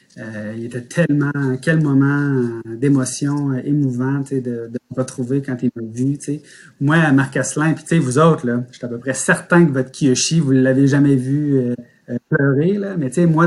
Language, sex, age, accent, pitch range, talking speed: French, male, 30-49, Canadian, 120-150 Hz, 195 wpm